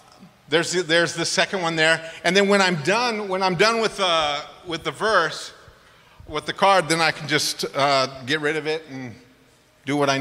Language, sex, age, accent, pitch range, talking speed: English, male, 40-59, American, 155-205 Hz, 210 wpm